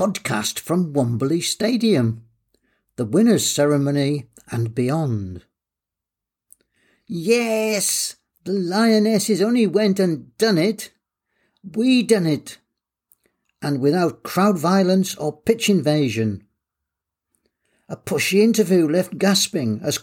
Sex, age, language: male, 50-69, English